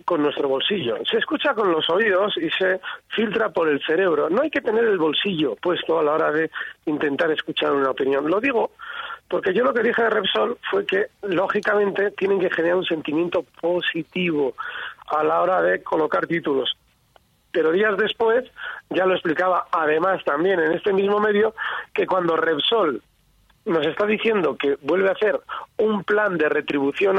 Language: Spanish